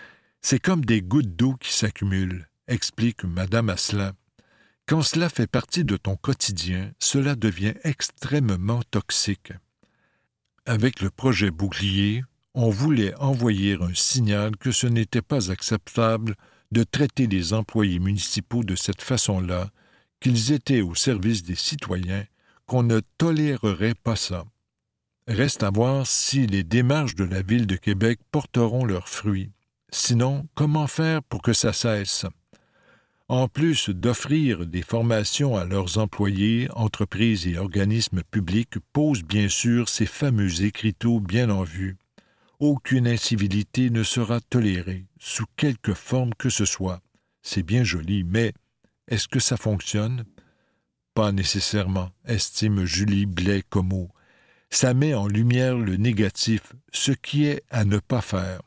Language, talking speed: French, 145 wpm